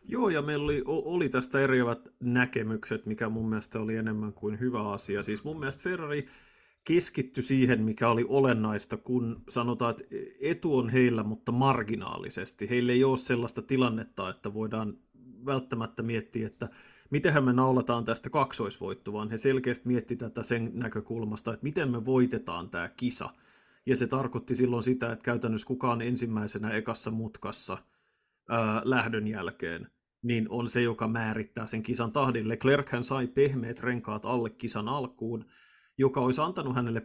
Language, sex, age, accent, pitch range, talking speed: Finnish, male, 30-49, native, 110-130 Hz, 150 wpm